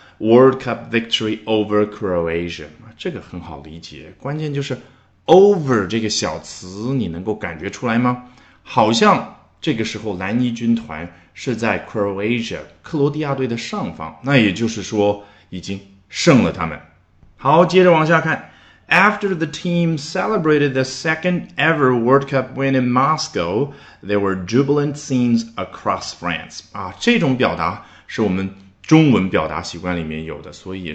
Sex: male